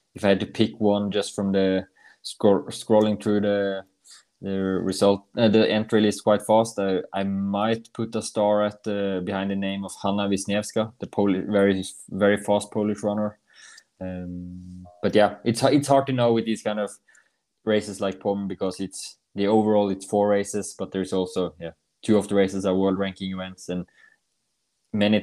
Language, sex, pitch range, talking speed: English, male, 95-105 Hz, 185 wpm